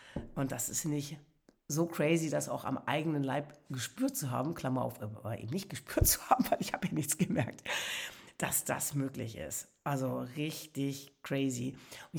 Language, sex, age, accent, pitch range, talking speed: German, female, 60-79, German, 135-165 Hz, 175 wpm